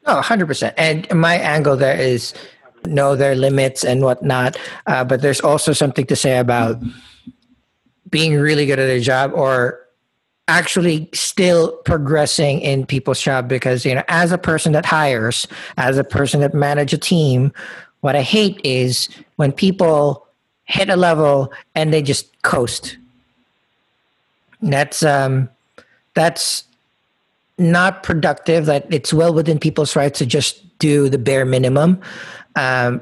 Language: English